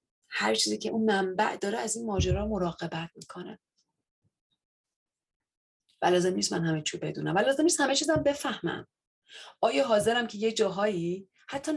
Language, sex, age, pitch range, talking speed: Persian, female, 30-49, 175-255 Hz, 145 wpm